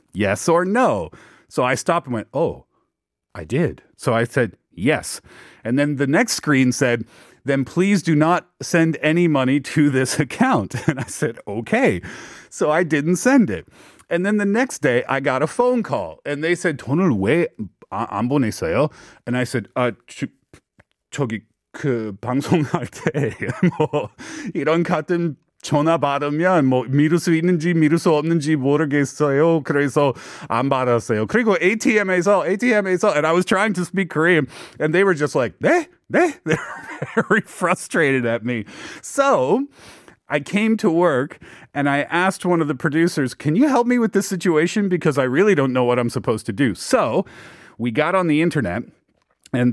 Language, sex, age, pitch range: Korean, male, 30-49, 130-180 Hz